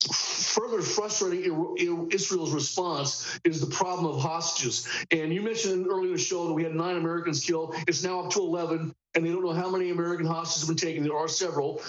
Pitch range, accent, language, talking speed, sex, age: 155-180 Hz, American, English, 205 wpm, male, 50-69